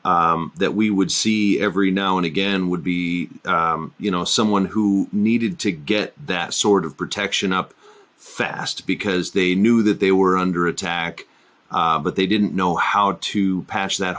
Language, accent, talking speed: English, American, 180 wpm